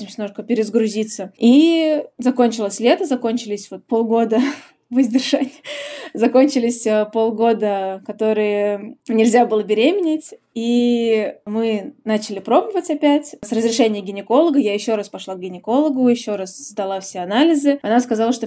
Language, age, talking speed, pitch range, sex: Russian, 20-39, 115 wpm, 210-260 Hz, female